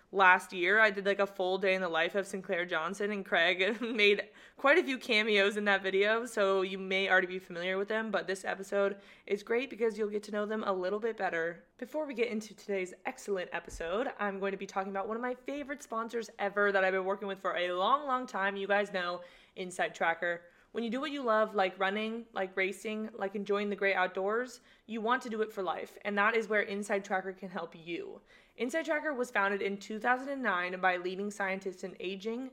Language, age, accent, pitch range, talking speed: English, 20-39, American, 190-225 Hz, 225 wpm